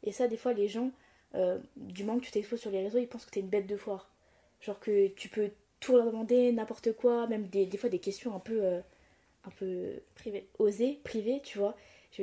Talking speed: 235 wpm